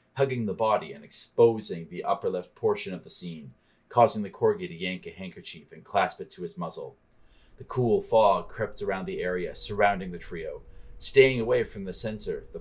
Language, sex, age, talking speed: English, male, 30-49, 195 wpm